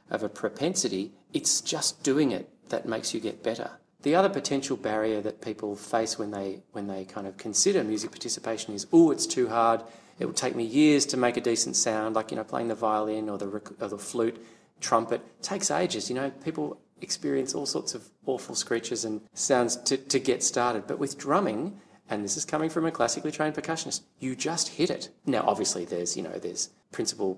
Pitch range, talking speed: 110-140 Hz, 210 wpm